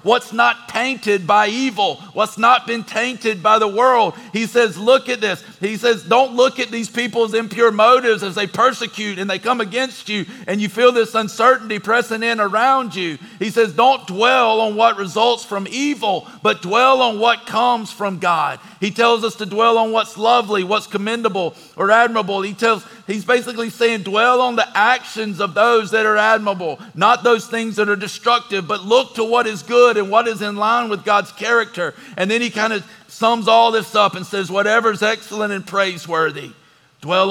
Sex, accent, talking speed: male, American, 195 wpm